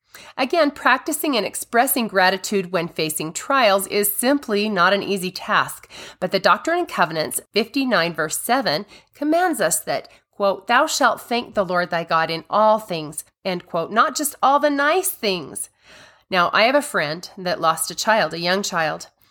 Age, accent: 30-49, American